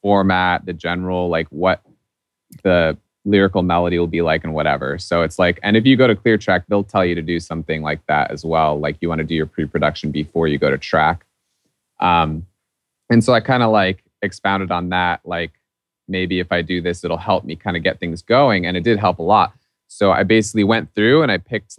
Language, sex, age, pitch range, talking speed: English, male, 20-39, 85-105 Hz, 230 wpm